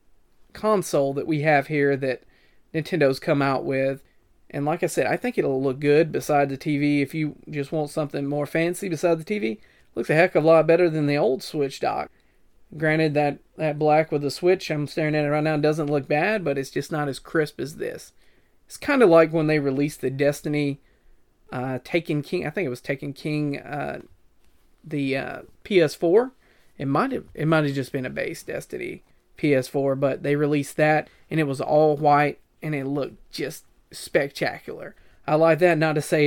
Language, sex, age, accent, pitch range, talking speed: English, male, 30-49, American, 140-160 Hz, 200 wpm